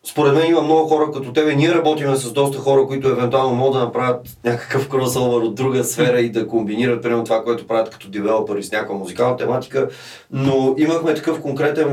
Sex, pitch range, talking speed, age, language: male, 120-150 Hz, 195 wpm, 30-49, Bulgarian